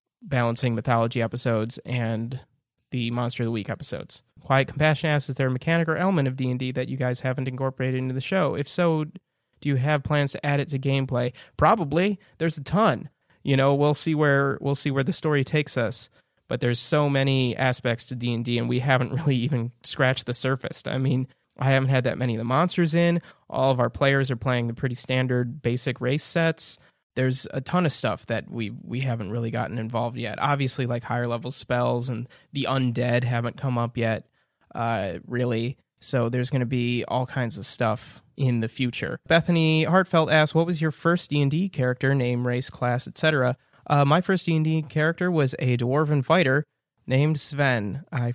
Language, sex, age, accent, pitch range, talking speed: English, male, 30-49, American, 120-145 Hz, 200 wpm